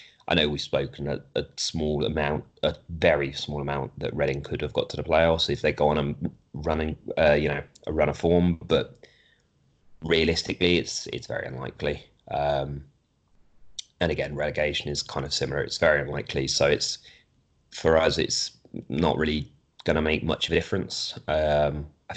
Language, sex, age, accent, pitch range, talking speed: English, male, 30-49, British, 75-85 Hz, 175 wpm